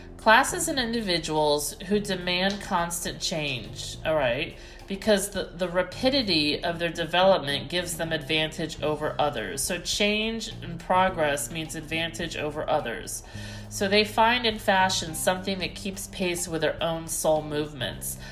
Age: 40-59